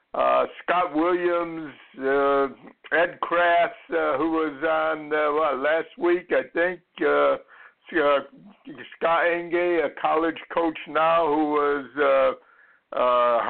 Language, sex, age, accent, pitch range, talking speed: English, male, 60-79, American, 135-165 Hz, 130 wpm